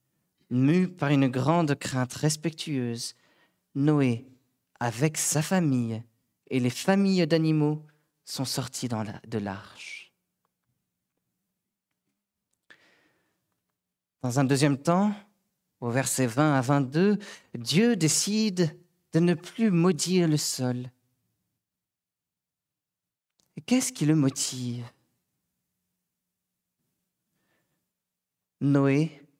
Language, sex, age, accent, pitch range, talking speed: French, male, 40-59, French, 125-190 Hz, 80 wpm